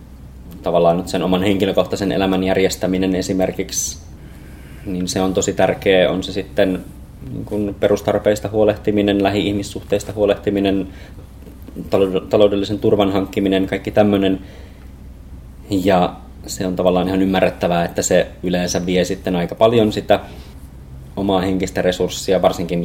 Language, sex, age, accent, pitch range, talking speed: Finnish, male, 20-39, native, 85-100 Hz, 115 wpm